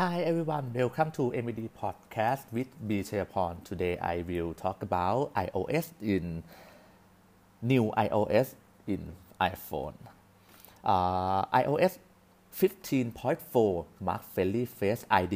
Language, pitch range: Thai, 95-130 Hz